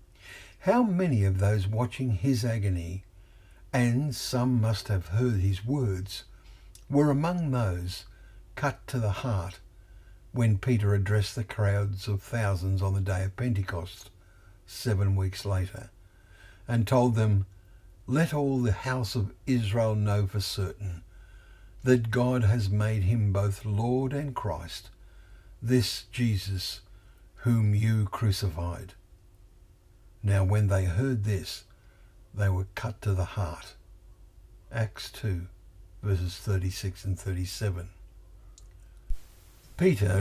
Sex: male